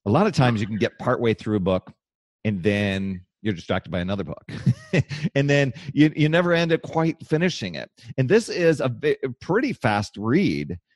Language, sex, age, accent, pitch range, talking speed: English, male, 40-59, American, 100-135 Hz, 195 wpm